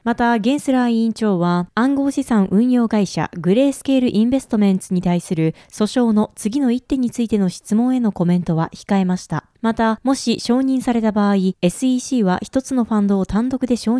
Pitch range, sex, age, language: 200-260 Hz, female, 20-39, Japanese